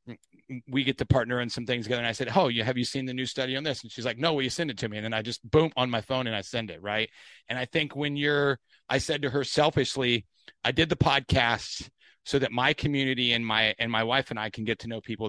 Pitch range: 115-140 Hz